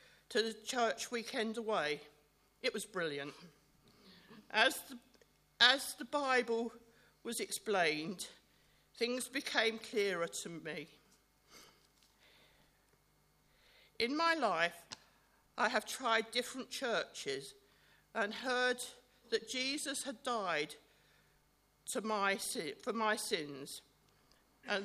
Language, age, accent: English, 50-69, British